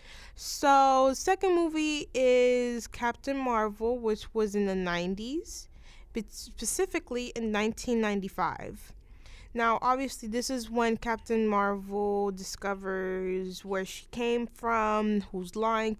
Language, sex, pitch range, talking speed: English, female, 210-260 Hz, 115 wpm